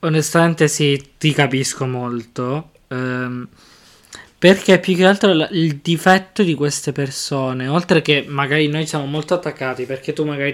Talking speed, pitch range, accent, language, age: 140 wpm, 140-170 Hz, native, Italian, 20-39